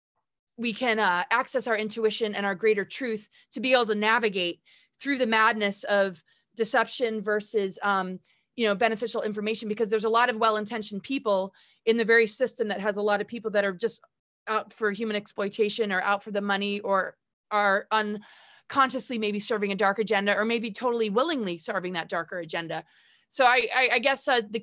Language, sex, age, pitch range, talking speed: English, female, 20-39, 205-240 Hz, 190 wpm